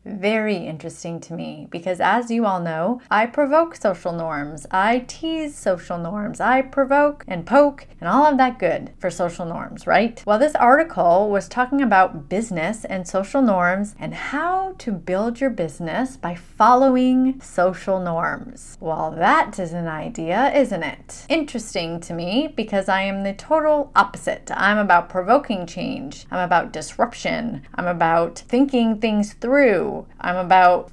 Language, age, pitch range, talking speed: English, 20-39, 180-265 Hz, 155 wpm